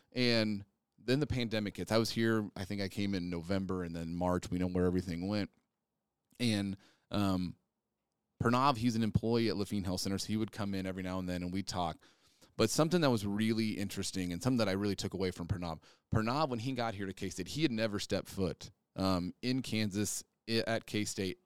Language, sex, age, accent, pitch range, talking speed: English, male, 30-49, American, 95-115 Hz, 215 wpm